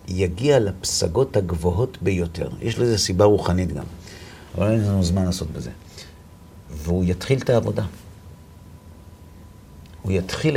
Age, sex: 50-69, male